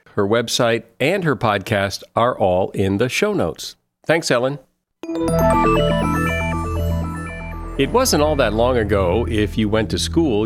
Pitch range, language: 105-140 Hz, English